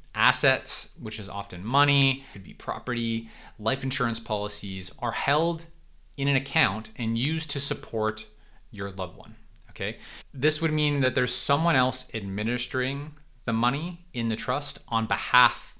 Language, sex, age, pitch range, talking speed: English, male, 20-39, 105-140 Hz, 150 wpm